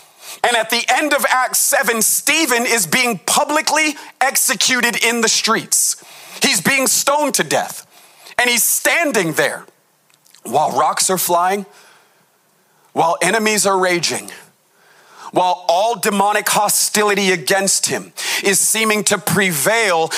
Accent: American